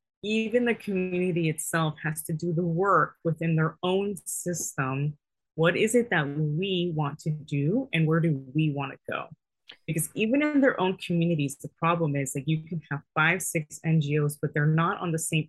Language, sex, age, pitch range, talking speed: English, female, 20-39, 155-180 Hz, 195 wpm